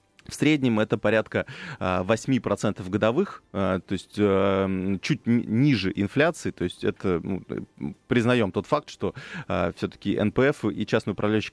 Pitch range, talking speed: 95-125 Hz, 125 wpm